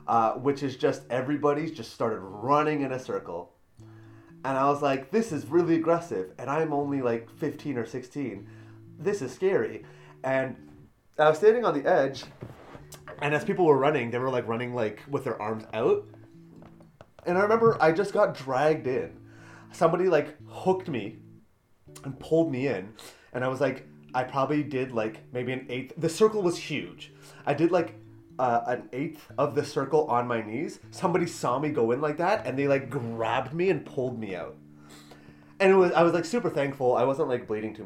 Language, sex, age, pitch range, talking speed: English, male, 30-49, 110-155 Hz, 195 wpm